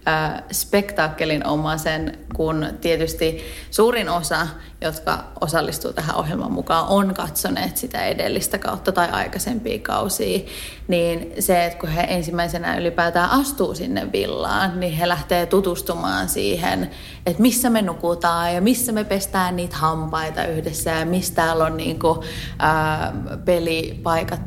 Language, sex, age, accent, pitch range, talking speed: Finnish, female, 30-49, native, 165-210 Hz, 130 wpm